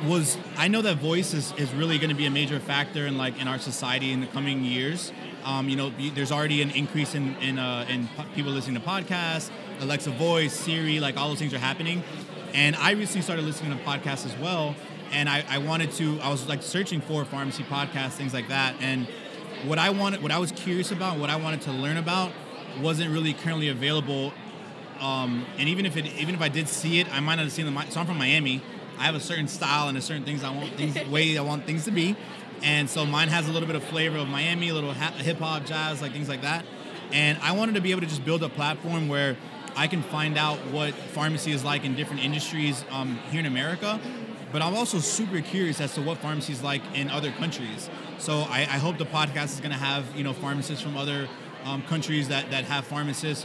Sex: male